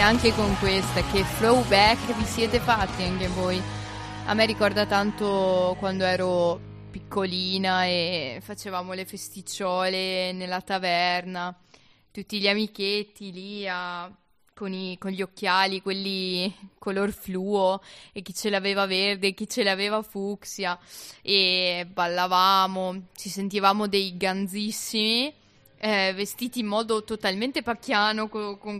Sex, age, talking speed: female, 20-39, 125 wpm